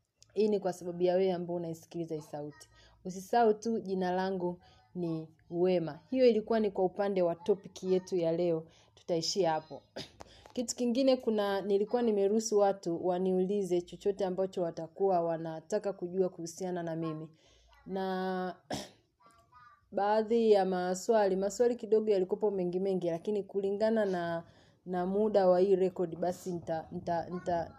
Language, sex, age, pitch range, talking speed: Swahili, female, 30-49, 175-205 Hz, 135 wpm